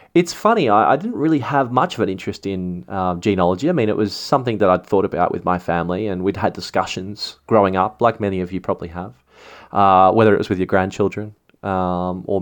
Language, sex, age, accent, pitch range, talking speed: English, male, 20-39, Australian, 95-110 Hz, 220 wpm